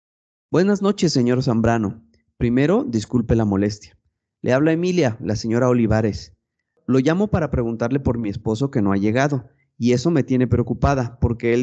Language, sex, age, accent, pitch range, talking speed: Spanish, male, 30-49, Mexican, 110-140 Hz, 165 wpm